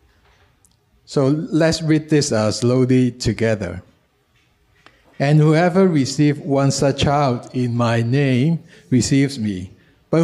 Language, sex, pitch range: Chinese, male, 120-150 Hz